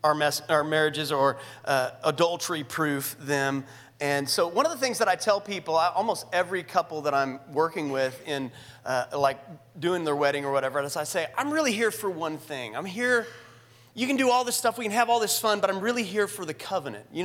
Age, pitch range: 30-49, 155-220 Hz